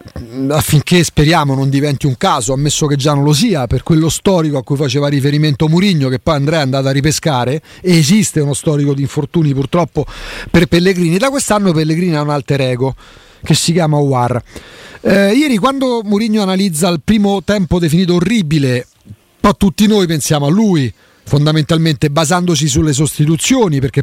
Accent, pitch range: native, 145-185 Hz